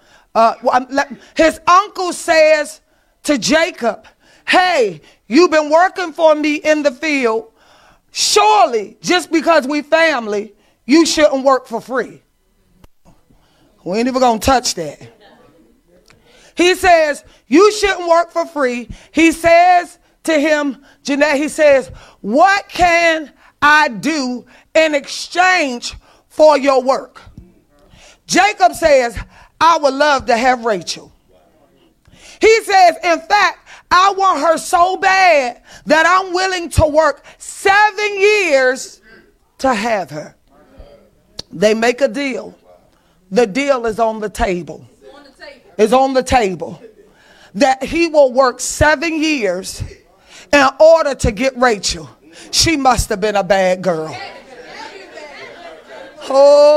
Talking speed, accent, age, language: 120 wpm, American, 30-49, English